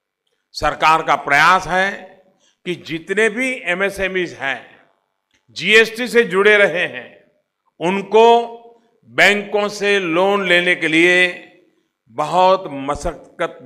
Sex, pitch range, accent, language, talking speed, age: male, 165-220 Hz, native, Hindi, 100 wpm, 50-69